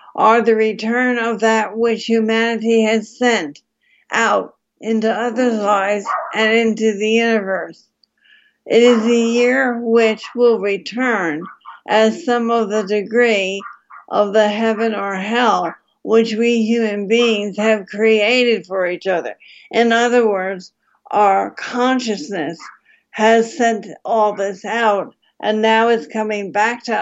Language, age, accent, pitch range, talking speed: English, 60-79, American, 205-230 Hz, 130 wpm